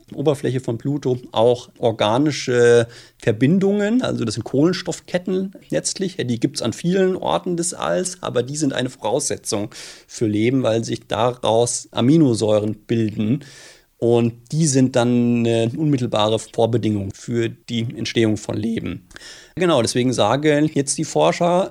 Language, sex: German, male